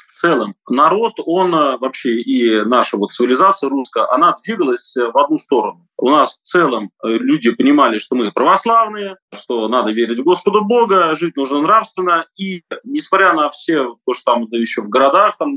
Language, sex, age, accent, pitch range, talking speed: Russian, male, 30-49, native, 130-210 Hz, 160 wpm